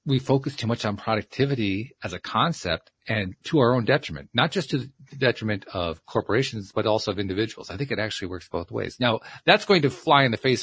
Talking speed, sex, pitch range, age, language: 225 wpm, male, 95-125 Hz, 40-59, English